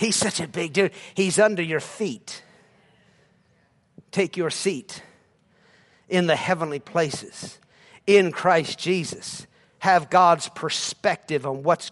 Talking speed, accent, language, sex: 120 wpm, American, English, male